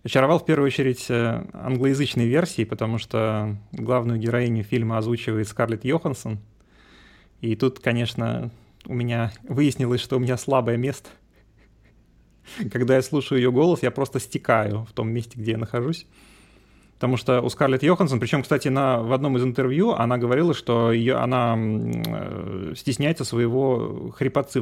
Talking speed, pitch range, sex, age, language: 145 wpm, 115-135 Hz, male, 30-49, Russian